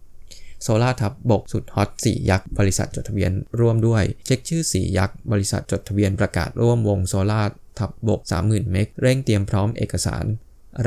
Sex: male